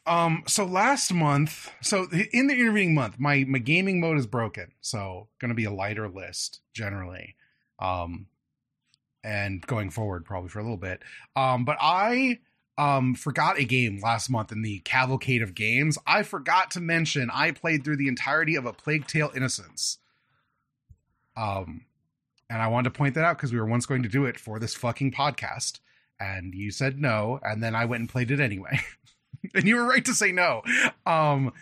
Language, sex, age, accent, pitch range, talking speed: English, male, 30-49, American, 115-150 Hz, 190 wpm